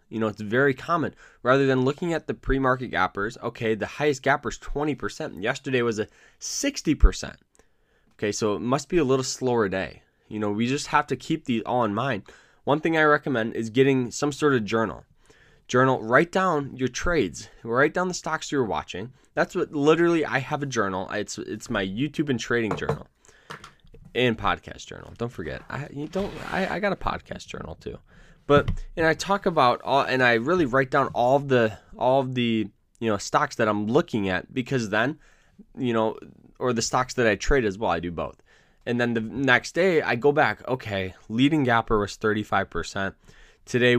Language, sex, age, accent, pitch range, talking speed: English, male, 10-29, American, 110-140 Hz, 200 wpm